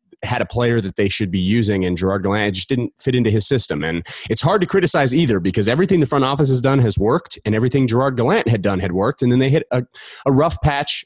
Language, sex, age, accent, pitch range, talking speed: English, male, 30-49, American, 95-120 Hz, 260 wpm